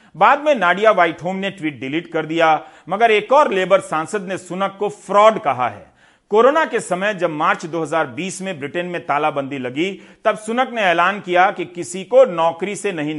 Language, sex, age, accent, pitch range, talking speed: Hindi, male, 40-59, native, 155-210 Hz, 190 wpm